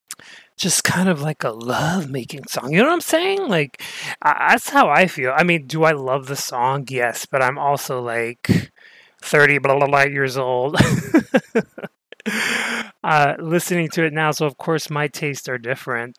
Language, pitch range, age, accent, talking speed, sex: English, 125-160 Hz, 30-49, American, 180 wpm, male